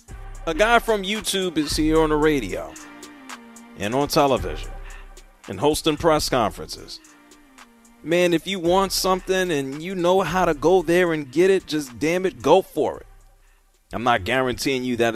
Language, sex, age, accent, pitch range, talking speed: English, male, 40-59, American, 100-155 Hz, 165 wpm